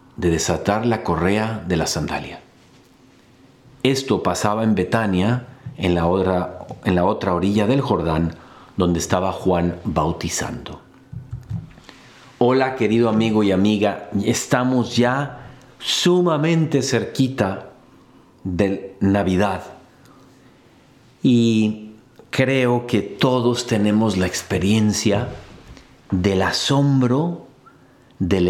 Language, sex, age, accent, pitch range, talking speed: Spanish, male, 50-69, Mexican, 100-130 Hz, 90 wpm